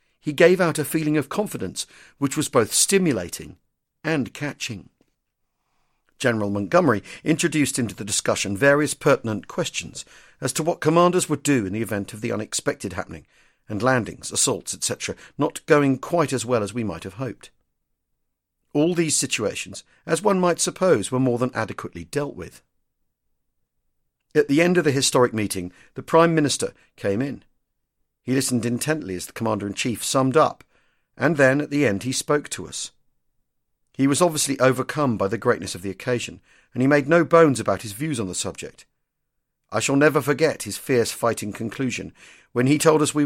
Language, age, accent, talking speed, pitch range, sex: English, 50-69, British, 175 wpm, 110-155 Hz, male